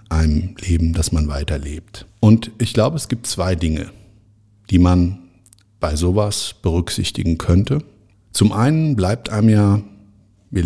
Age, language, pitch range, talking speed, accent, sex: 50-69, German, 85-105 Hz, 135 wpm, German, male